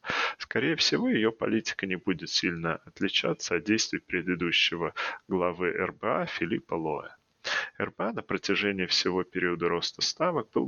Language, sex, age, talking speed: Russian, male, 20-39, 130 wpm